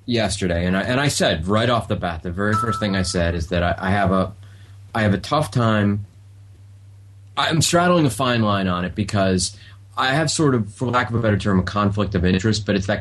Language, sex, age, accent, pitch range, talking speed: English, male, 30-49, American, 95-115 Hz, 240 wpm